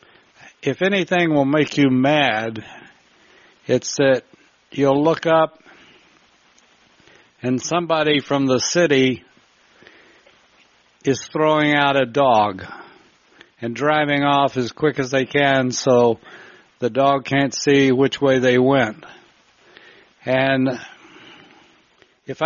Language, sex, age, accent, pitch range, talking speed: English, male, 60-79, American, 125-150 Hz, 105 wpm